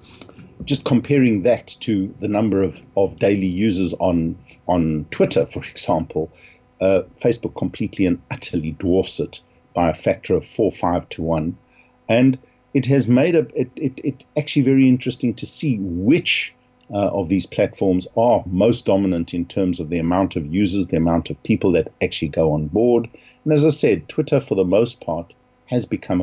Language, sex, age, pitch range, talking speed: English, male, 50-69, 90-125 Hz, 180 wpm